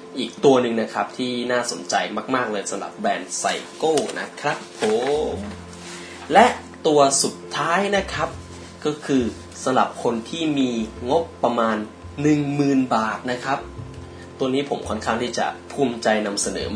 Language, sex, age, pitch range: Thai, male, 20-39, 110-140 Hz